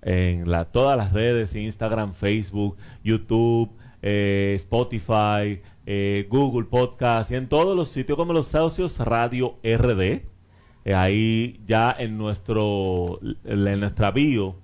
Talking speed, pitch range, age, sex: 120 wpm, 100-125 Hz, 30-49, male